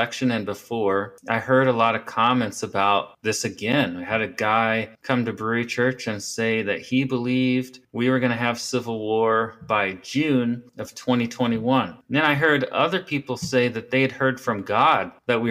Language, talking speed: English, 190 wpm